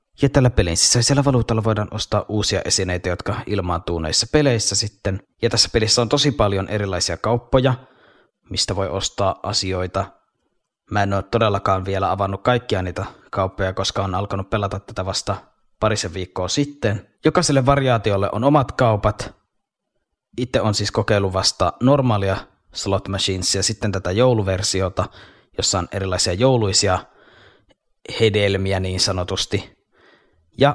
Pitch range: 95-125 Hz